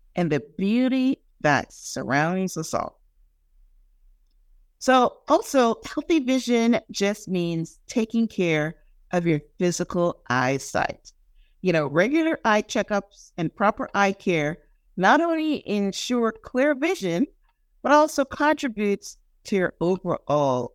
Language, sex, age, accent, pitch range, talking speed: English, female, 50-69, American, 150-235 Hz, 115 wpm